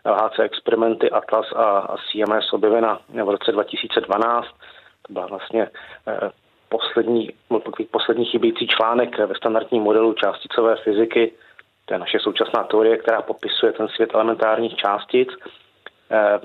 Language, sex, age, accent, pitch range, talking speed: Czech, male, 30-49, native, 110-120 Hz, 120 wpm